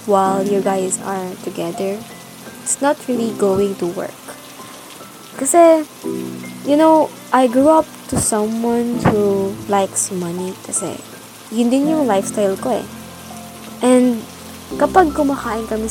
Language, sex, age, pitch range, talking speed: English, female, 20-39, 185-245 Hz, 120 wpm